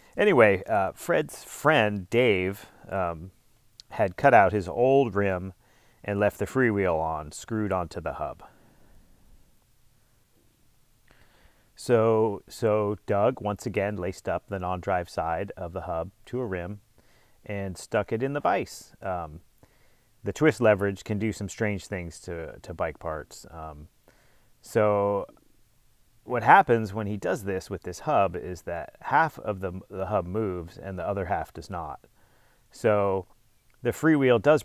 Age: 30-49